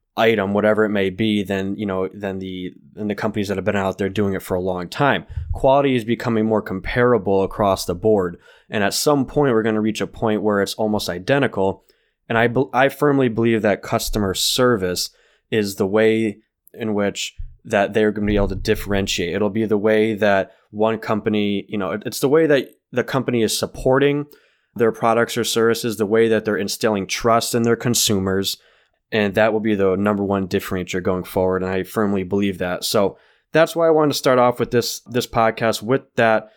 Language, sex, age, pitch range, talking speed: English, male, 20-39, 105-120 Hz, 205 wpm